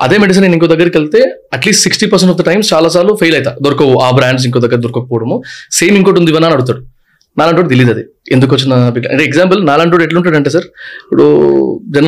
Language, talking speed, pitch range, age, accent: Telugu, 180 wpm, 140-185 Hz, 30-49, native